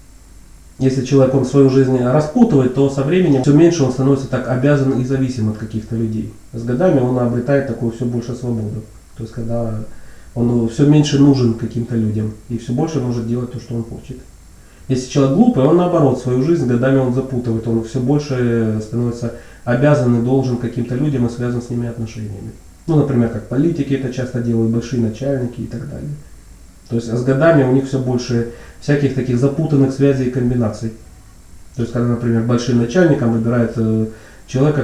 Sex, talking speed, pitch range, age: male, 185 wpm, 115-135 Hz, 30-49